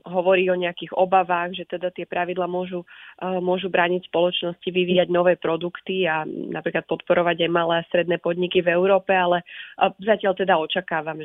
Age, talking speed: 30-49, 155 wpm